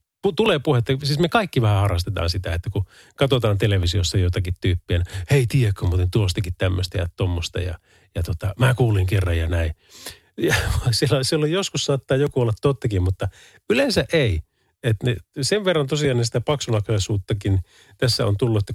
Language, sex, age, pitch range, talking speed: Finnish, male, 30-49, 95-140 Hz, 165 wpm